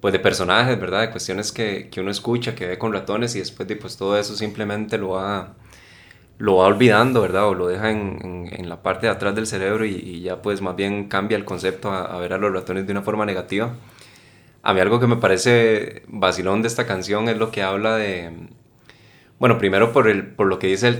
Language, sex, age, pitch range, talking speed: English, male, 20-39, 95-115 Hz, 235 wpm